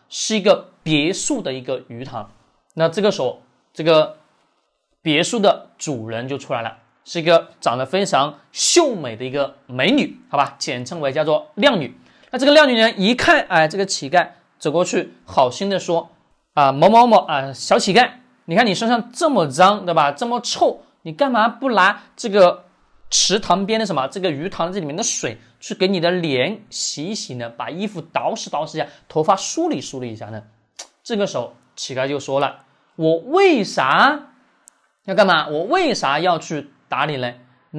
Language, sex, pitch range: Chinese, male, 145-225 Hz